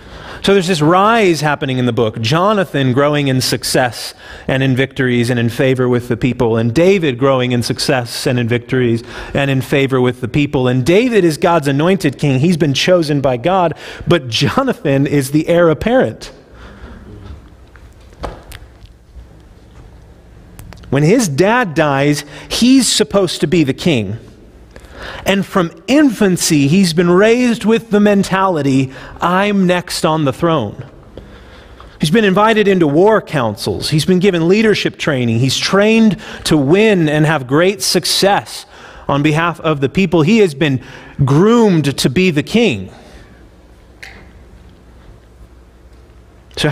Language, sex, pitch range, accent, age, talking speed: English, male, 125-185 Hz, American, 40-59, 140 wpm